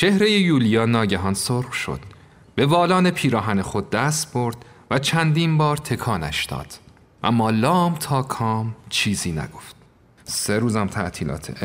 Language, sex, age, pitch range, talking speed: Persian, male, 40-59, 105-145 Hz, 130 wpm